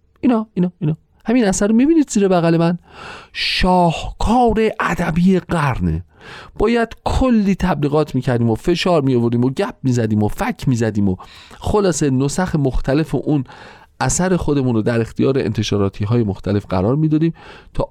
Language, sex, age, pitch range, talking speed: Persian, male, 40-59, 100-160 Hz, 135 wpm